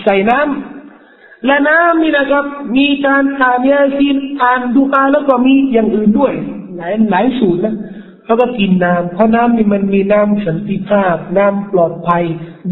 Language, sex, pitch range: Thai, male, 180-260 Hz